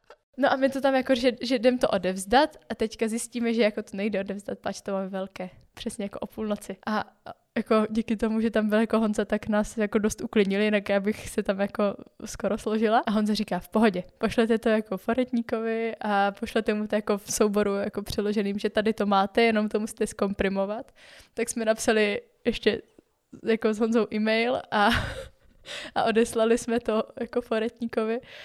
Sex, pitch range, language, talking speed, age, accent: female, 205-230 Hz, Czech, 190 wpm, 10-29, native